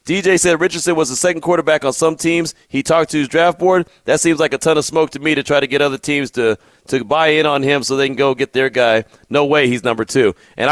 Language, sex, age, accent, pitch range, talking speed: English, male, 30-49, American, 140-170 Hz, 280 wpm